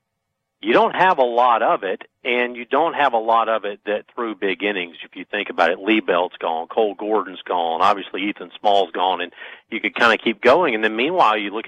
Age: 40-59